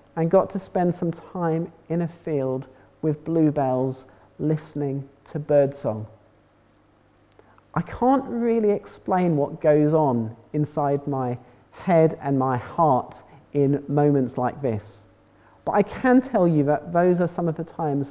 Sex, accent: male, British